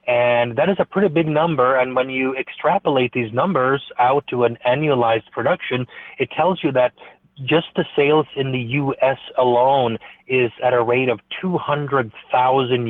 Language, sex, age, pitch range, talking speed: English, male, 30-49, 115-135 Hz, 165 wpm